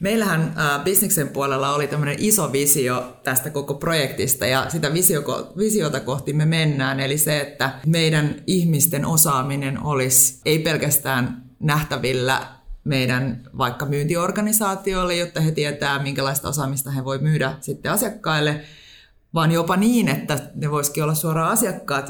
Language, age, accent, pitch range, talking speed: Finnish, 30-49, native, 130-155 Hz, 130 wpm